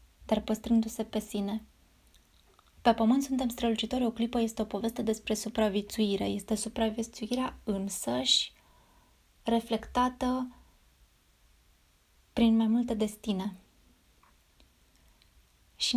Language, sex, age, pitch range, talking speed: Romanian, female, 20-39, 200-230 Hz, 90 wpm